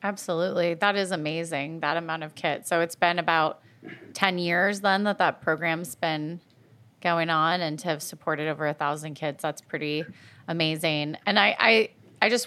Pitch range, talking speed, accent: 155-195 Hz, 180 wpm, American